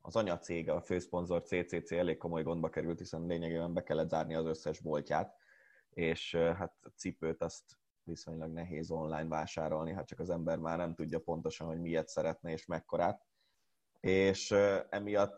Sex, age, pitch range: male, 20-39, 80-95 Hz